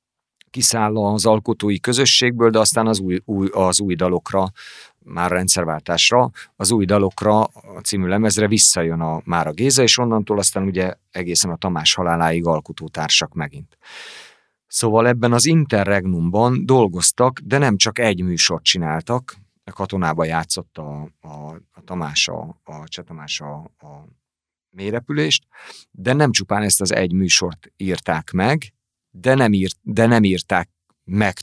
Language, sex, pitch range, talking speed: Hungarian, male, 85-110 Hz, 135 wpm